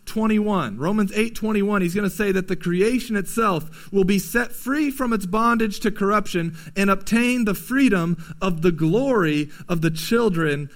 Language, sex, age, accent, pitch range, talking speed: English, male, 40-59, American, 170-215 Hz, 175 wpm